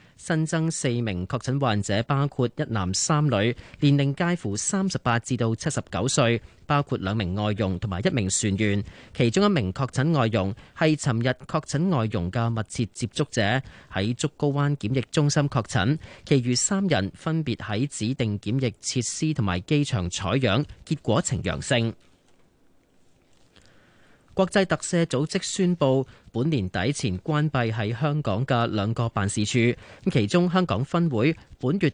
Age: 30-49